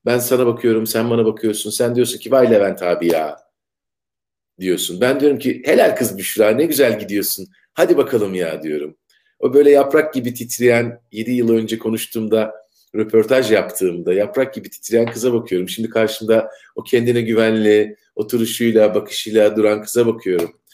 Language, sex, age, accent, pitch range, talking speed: Turkish, male, 50-69, native, 110-155 Hz, 155 wpm